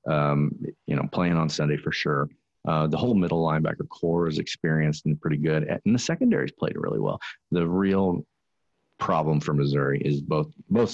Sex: male